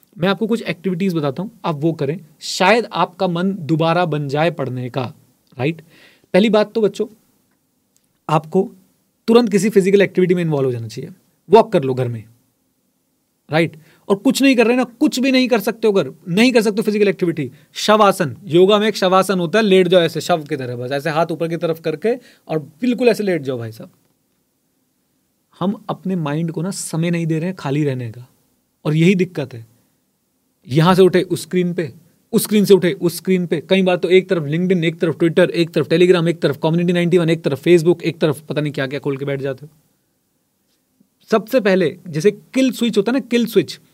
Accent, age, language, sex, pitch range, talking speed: native, 30-49, Hindi, male, 155-195 Hz, 210 wpm